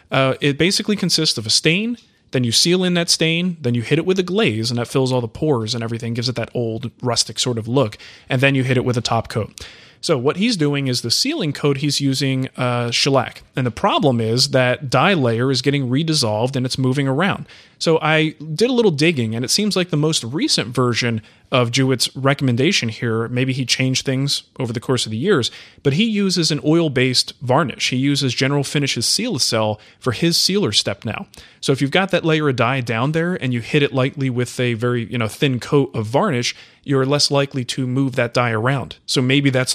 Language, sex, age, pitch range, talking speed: English, male, 30-49, 120-145 Hz, 230 wpm